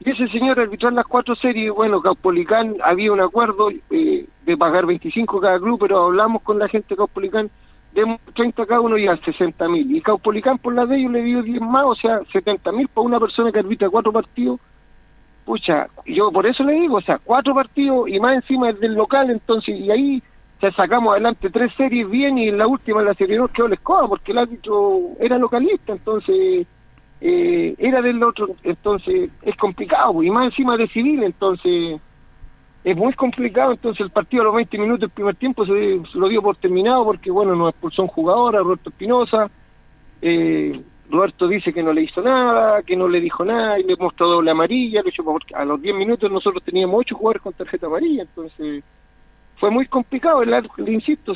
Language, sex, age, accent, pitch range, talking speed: Spanish, male, 50-69, Argentinian, 195-245 Hz, 200 wpm